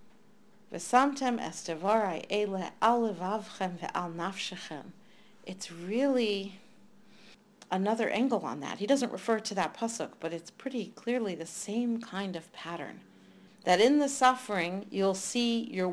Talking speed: 105 wpm